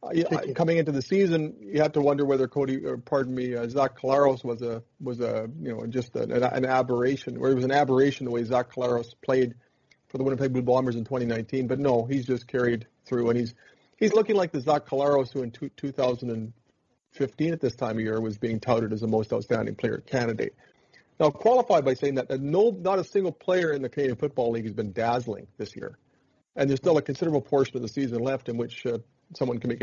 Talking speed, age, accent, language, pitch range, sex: 225 wpm, 40-59, American, English, 120-145 Hz, male